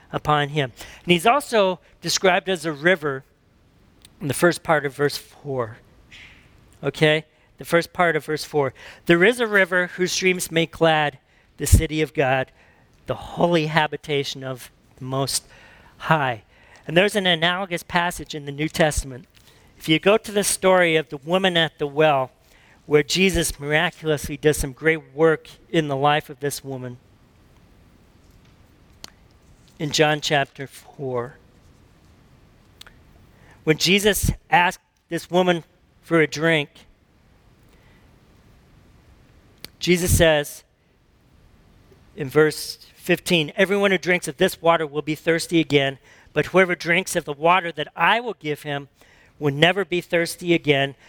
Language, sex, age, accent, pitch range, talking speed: English, male, 50-69, American, 140-170 Hz, 140 wpm